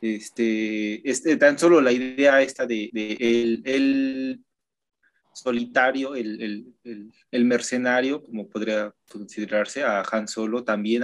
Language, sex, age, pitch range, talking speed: Spanish, male, 20-39, 110-145 Hz, 130 wpm